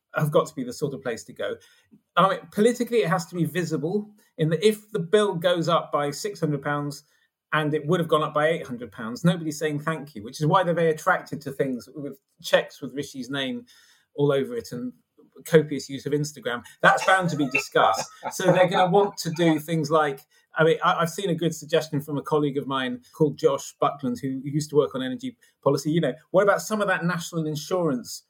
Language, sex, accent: English, male, British